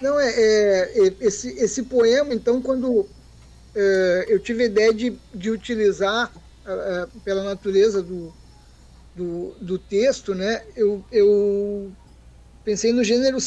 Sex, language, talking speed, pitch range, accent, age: male, Portuguese, 135 wpm, 195-245 Hz, Brazilian, 20-39